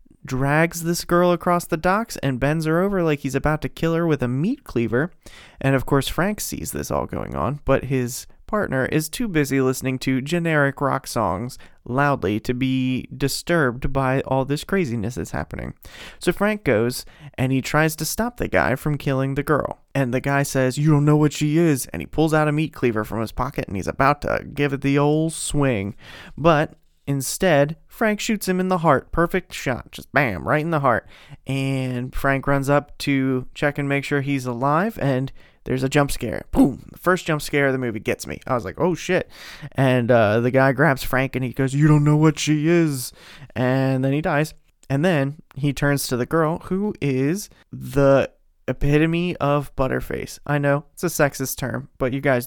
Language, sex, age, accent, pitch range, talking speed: English, male, 30-49, American, 130-155 Hz, 205 wpm